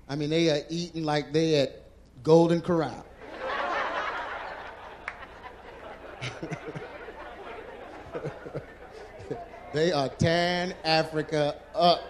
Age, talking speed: 30-49, 75 wpm